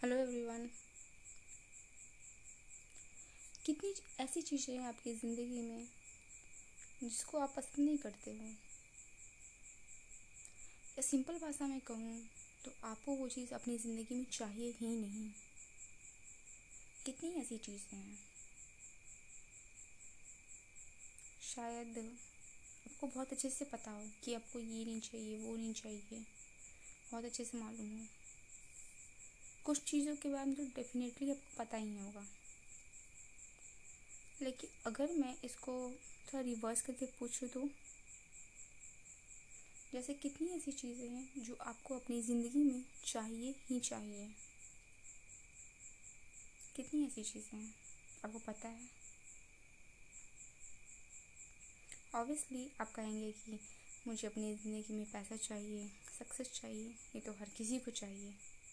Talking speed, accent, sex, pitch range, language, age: 115 wpm, native, female, 205-255 Hz, Hindi, 20-39